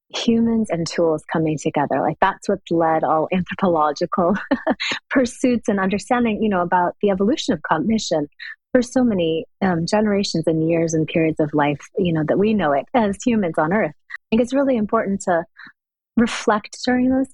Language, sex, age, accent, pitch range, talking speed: English, female, 30-49, American, 165-220 Hz, 175 wpm